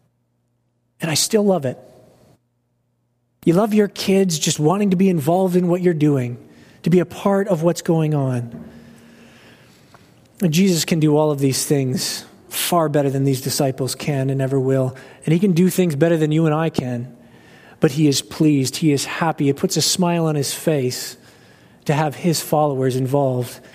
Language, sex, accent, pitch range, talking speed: English, male, American, 130-160 Hz, 180 wpm